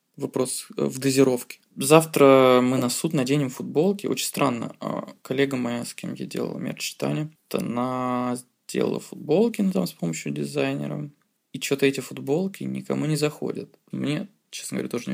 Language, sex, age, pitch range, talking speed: Russian, male, 20-39, 120-155 Hz, 145 wpm